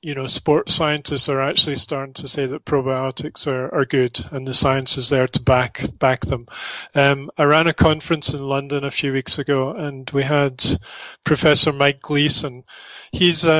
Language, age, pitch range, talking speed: English, 30-49, 135-155 Hz, 180 wpm